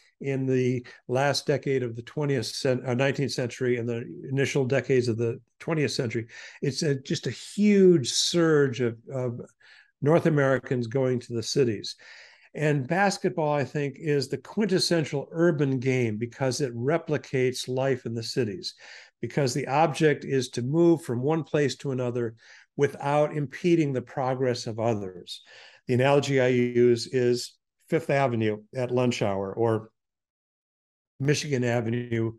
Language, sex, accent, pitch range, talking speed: English, male, American, 120-145 Hz, 145 wpm